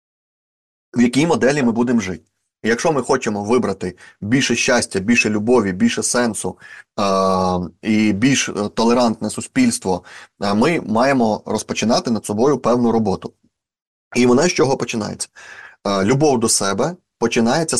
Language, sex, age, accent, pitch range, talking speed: Ukrainian, male, 20-39, native, 100-125 Hz, 130 wpm